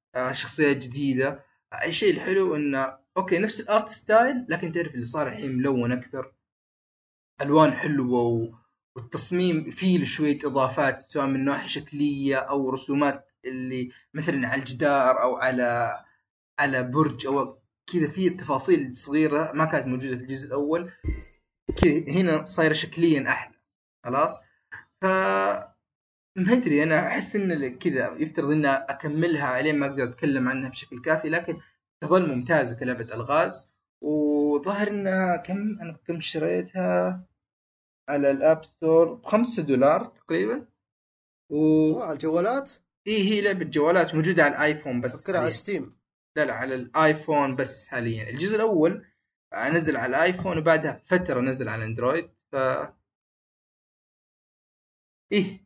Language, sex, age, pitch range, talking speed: Arabic, male, 20-39, 130-170 Hz, 125 wpm